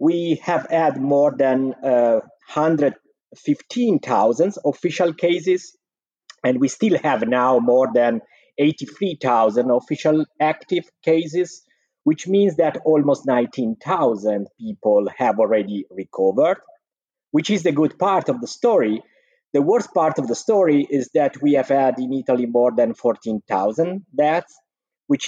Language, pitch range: English, 125-190 Hz